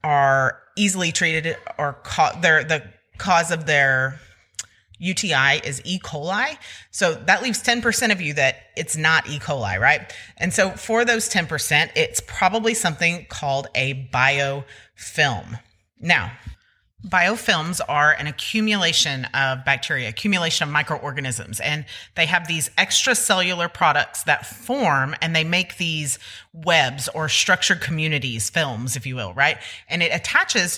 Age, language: 30-49, English